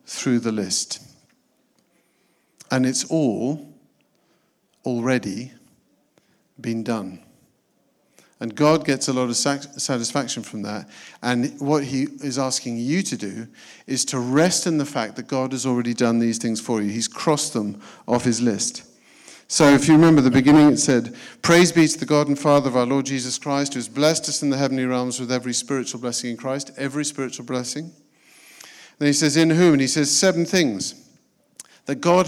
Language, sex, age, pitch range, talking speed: English, male, 50-69, 125-150 Hz, 180 wpm